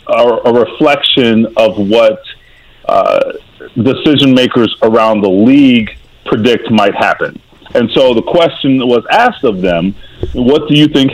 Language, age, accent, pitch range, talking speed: English, 40-59, American, 110-150 Hz, 140 wpm